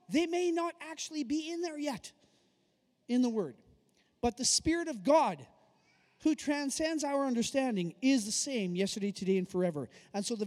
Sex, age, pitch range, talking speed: male, 30-49, 200-265 Hz, 170 wpm